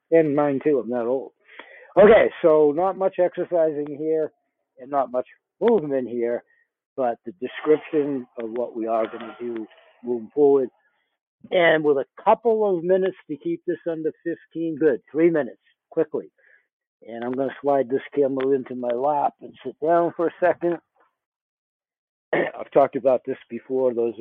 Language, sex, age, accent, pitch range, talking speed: English, male, 60-79, American, 125-165 Hz, 165 wpm